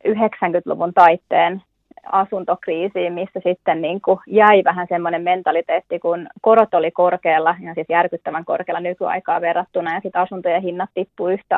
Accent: native